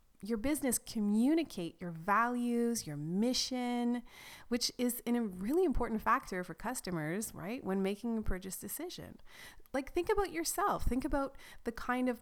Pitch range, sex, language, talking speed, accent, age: 180-240 Hz, female, English, 145 wpm, American, 30-49